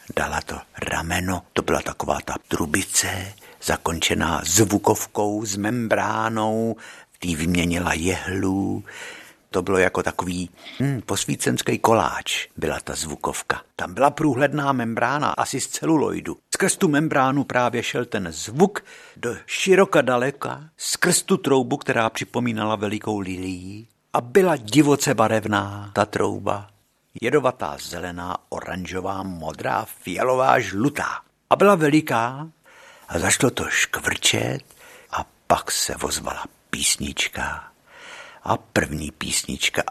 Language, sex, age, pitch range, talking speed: Czech, male, 50-69, 100-140 Hz, 115 wpm